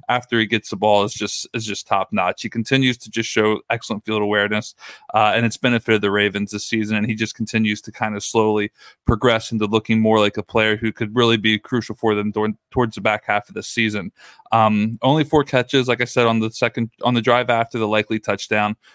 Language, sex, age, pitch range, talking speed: English, male, 20-39, 110-120 Hz, 235 wpm